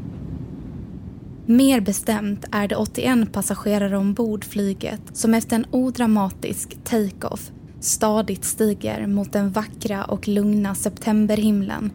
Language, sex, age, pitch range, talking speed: Swedish, female, 20-39, 190-215 Hz, 105 wpm